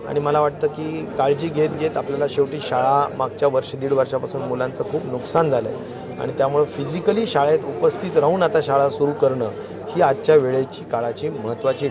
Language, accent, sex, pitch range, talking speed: Marathi, native, male, 150-215 Hz, 165 wpm